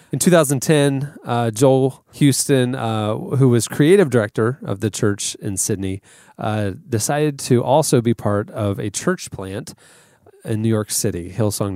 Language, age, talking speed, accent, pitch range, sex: English, 30-49, 155 wpm, American, 105-135 Hz, male